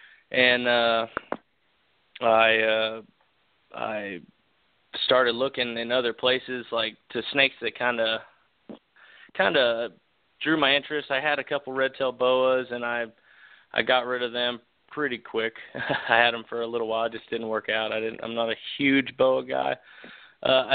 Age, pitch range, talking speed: 30-49, 115-135 Hz, 165 wpm